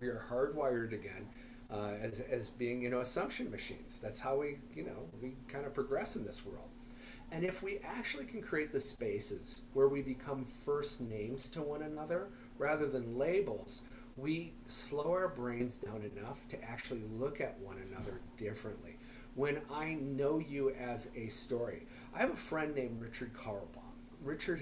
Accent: American